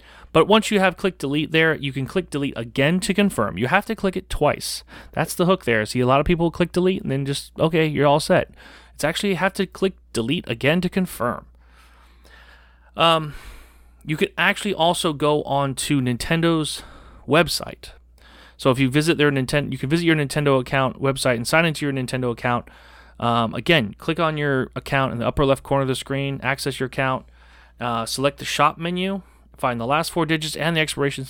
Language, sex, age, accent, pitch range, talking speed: English, male, 30-49, American, 120-165 Hz, 205 wpm